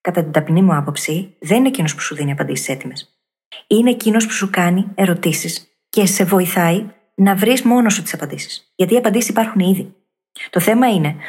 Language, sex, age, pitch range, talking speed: Greek, female, 20-39, 175-225 Hz, 190 wpm